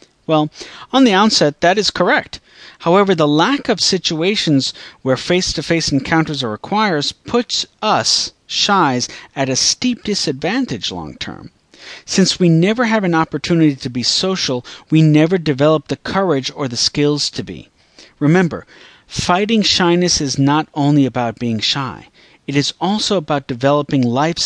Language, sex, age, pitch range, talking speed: English, male, 40-59, 130-170 Hz, 145 wpm